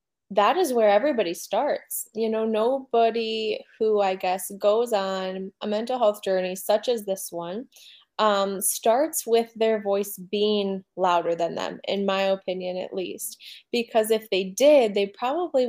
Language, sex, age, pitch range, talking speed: English, female, 20-39, 190-220 Hz, 155 wpm